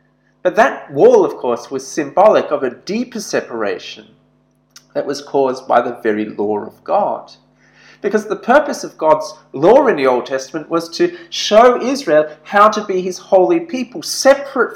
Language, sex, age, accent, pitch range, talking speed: English, male, 30-49, Australian, 140-210 Hz, 165 wpm